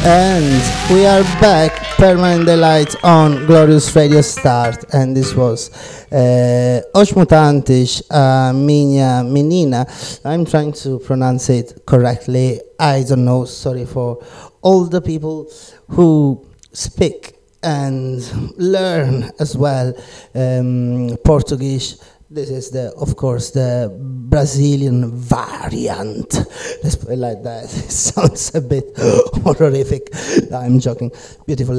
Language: Italian